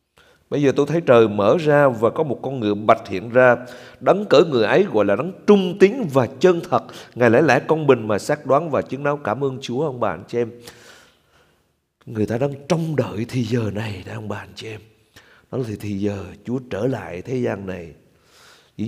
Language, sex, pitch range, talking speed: Vietnamese, male, 105-145 Hz, 215 wpm